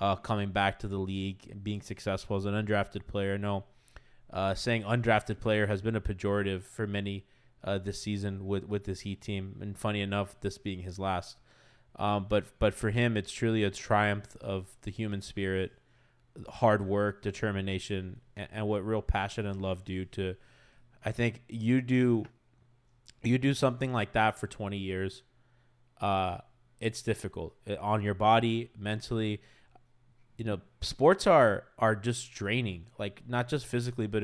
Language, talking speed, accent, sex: English, 165 wpm, American, male